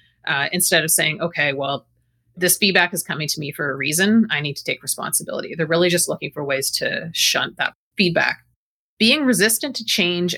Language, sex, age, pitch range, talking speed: English, female, 30-49, 150-195 Hz, 195 wpm